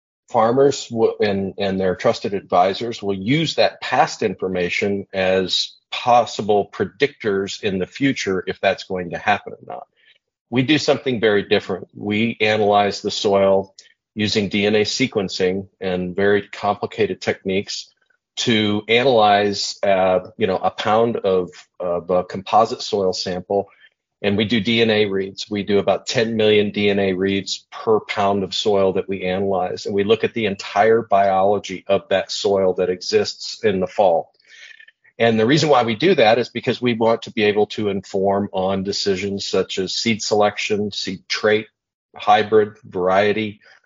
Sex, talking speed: male, 155 wpm